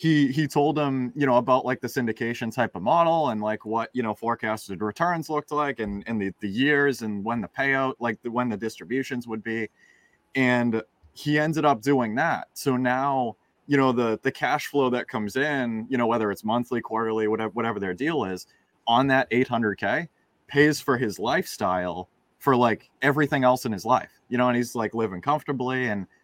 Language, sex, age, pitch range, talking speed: English, male, 20-39, 110-140 Hz, 200 wpm